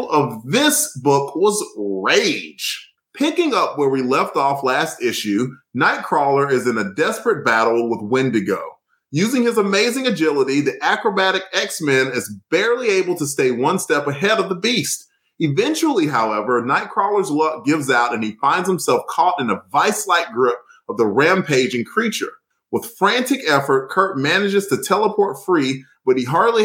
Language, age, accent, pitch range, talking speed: English, 30-49, American, 135-220 Hz, 155 wpm